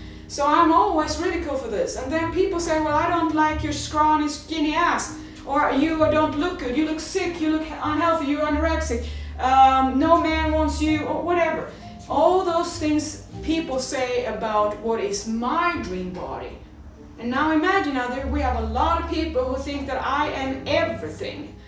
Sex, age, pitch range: female, 30-49, 265-315 Hz